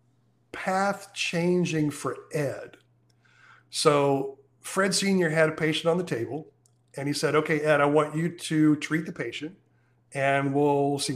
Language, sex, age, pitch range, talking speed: English, male, 50-69, 135-180 Hz, 150 wpm